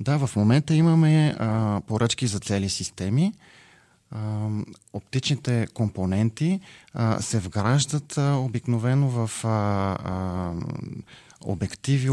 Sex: male